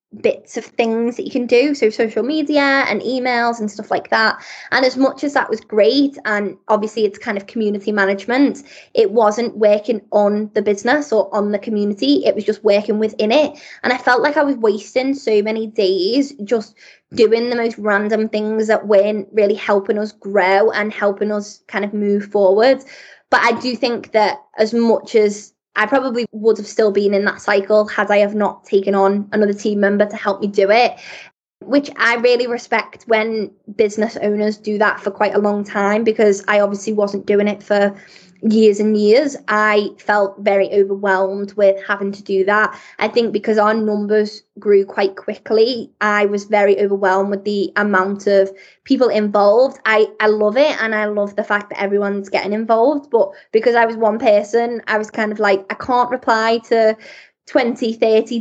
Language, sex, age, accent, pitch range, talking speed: English, female, 20-39, British, 205-230 Hz, 190 wpm